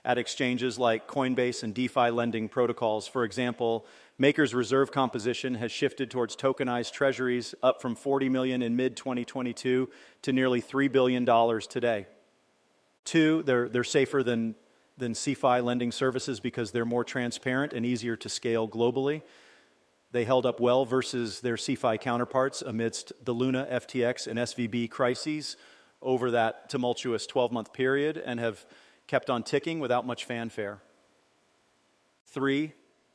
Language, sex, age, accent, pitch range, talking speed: English, male, 40-59, American, 120-130 Hz, 140 wpm